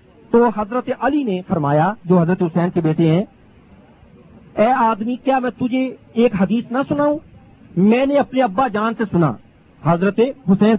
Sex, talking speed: male, 160 wpm